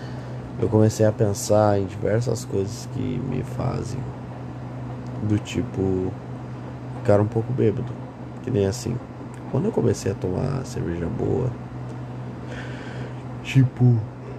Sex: male